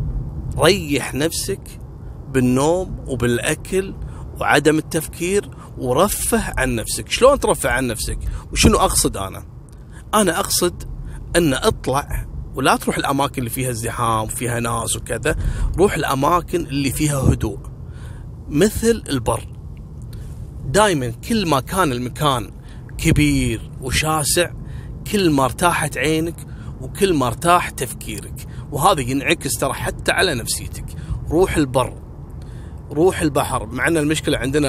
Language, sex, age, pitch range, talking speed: Arabic, male, 30-49, 125-150 Hz, 110 wpm